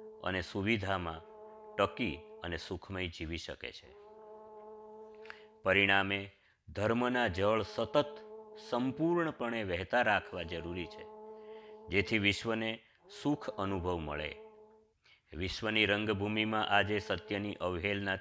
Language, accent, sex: Gujarati, native, male